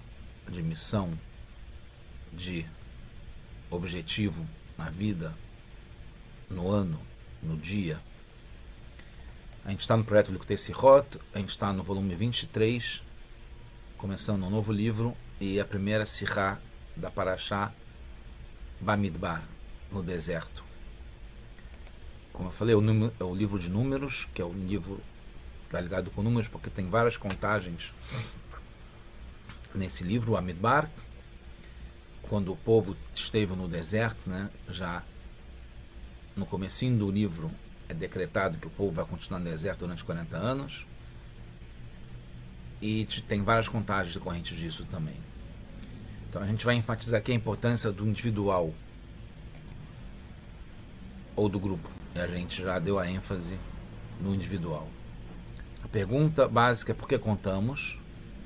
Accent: Brazilian